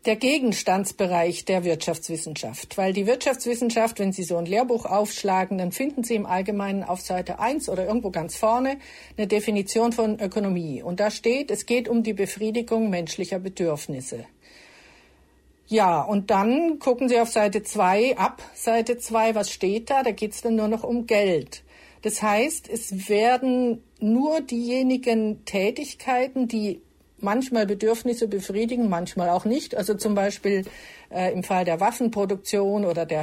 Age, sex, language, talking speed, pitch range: 50-69, female, German, 155 wpm, 185-235 Hz